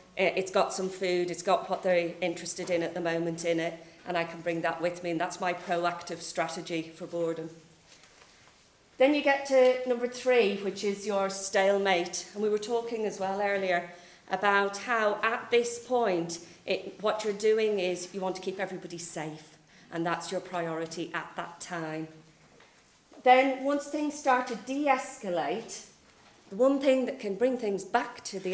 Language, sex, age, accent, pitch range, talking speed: English, female, 40-59, British, 170-210 Hz, 175 wpm